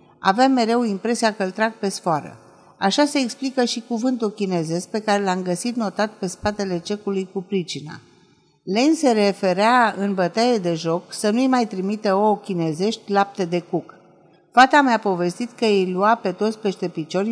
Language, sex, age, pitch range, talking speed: Romanian, female, 50-69, 180-235 Hz, 175 wpm